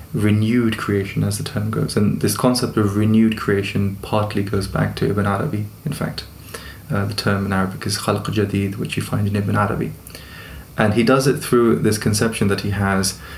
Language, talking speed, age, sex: English, 195 wpm, 20-39, male